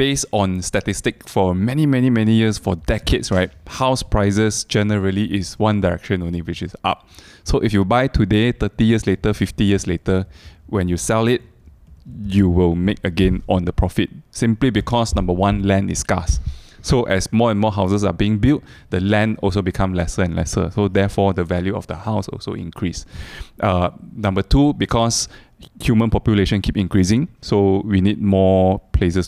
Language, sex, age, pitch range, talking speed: English, male, 20-39, 95-110 Hz, 180 wpm